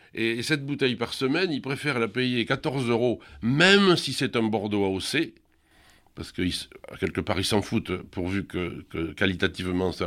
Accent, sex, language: French, male, French